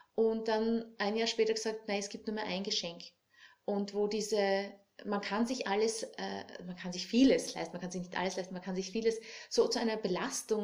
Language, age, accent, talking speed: German, 30-49, Austrian, 225 wpm